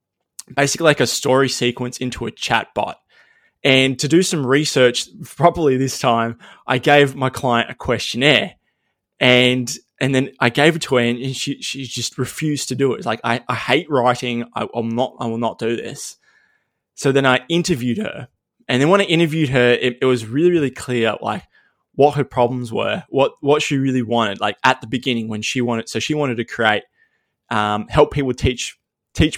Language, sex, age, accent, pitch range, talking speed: English, male, 20-39, Australian, 120-145 Hz, 200 wpm